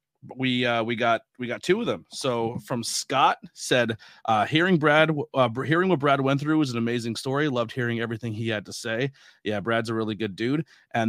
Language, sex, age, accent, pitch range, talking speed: English, male, 30-49, American, 115-135 Hz, 215 wpm